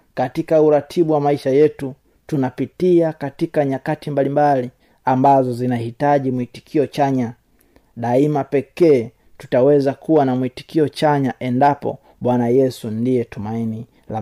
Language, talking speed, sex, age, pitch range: Swahili, 115 wpm, male, 30-49, 130-155 Hz